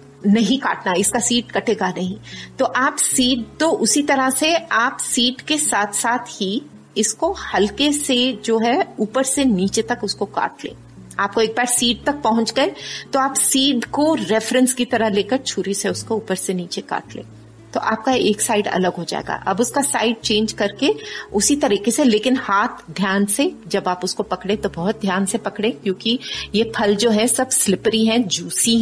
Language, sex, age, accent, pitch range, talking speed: Hindi, female, 30-49, native, 190-245 Hz, 190 wpm